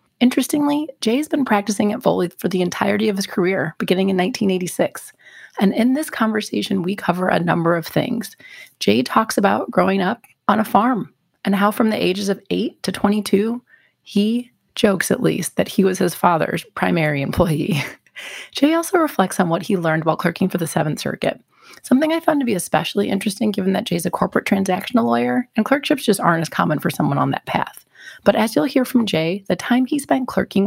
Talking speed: 200 wpm